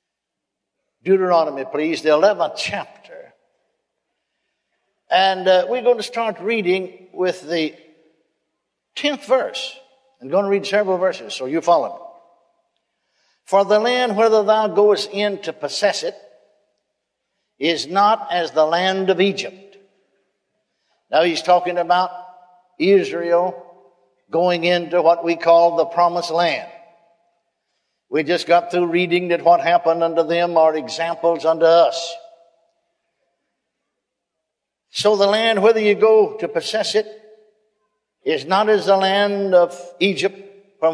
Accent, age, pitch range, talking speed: American, 60-79, 170-215 Hz, 130 wpm